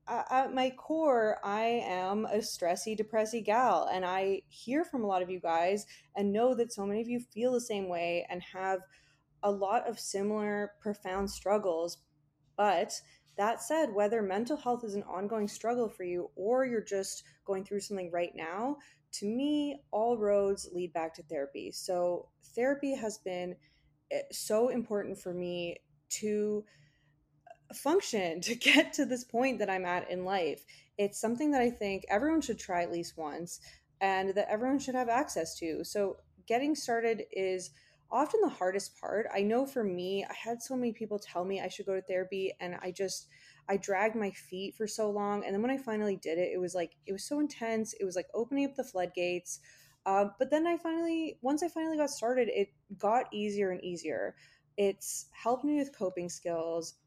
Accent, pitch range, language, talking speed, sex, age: American, 180-235 Hz, English, 190 wpm, female, 20-39